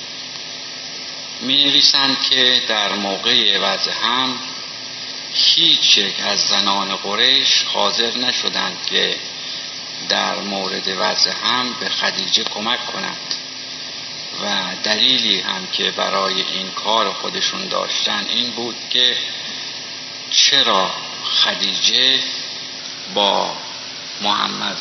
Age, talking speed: 50-69, 90 wpm